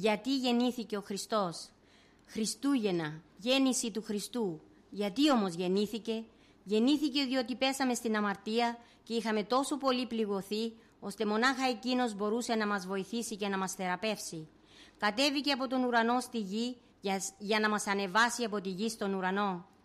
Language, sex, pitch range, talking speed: Greek, female, 205-245 Hz, 145 wpm